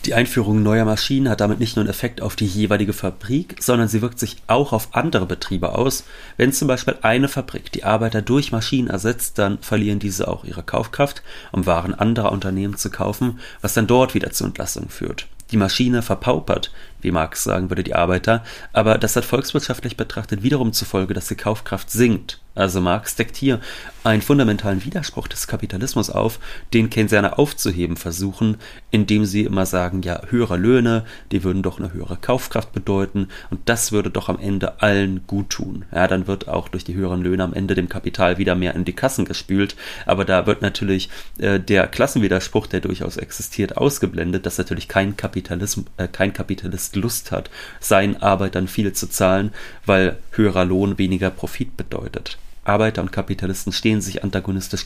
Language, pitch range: German, 95-115 Hz